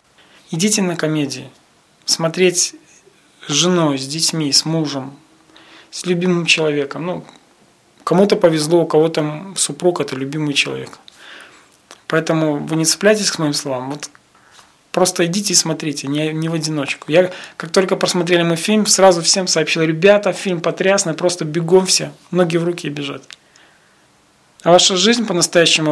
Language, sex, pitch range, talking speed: Russian, male, 150-180 Hz, 140 wpm